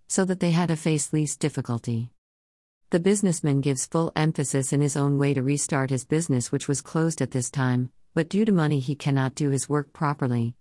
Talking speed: 210 wpm